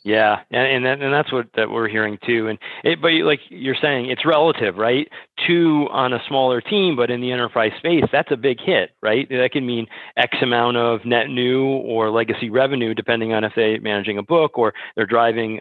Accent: American